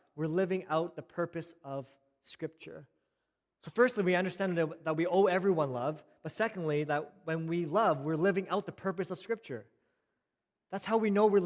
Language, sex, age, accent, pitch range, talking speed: English, male, 20-39, American, 150-185 Hz, 180 wpm